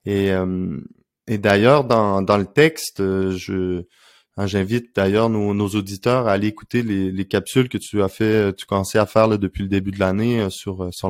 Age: 20-39